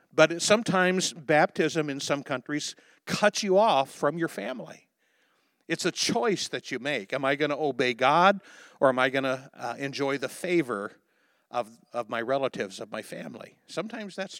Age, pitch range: 60-79, 135-185 Hz